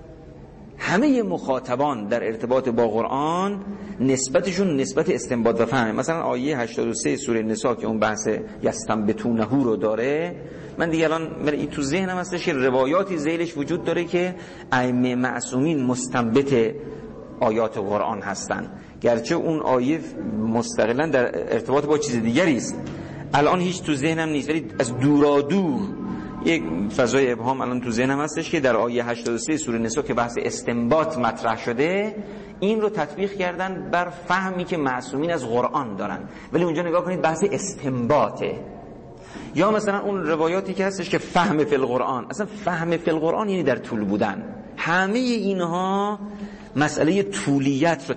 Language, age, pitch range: Persian, 50-69, 125-180 Hz